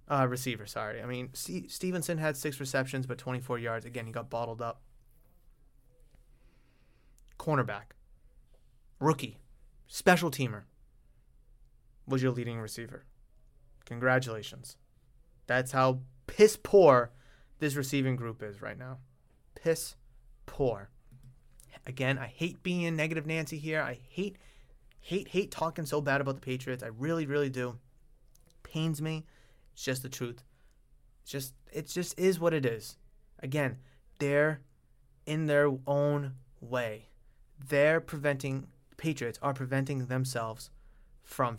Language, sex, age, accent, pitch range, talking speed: English, male, 20-39, American, 125-150 Hz, 125 wpm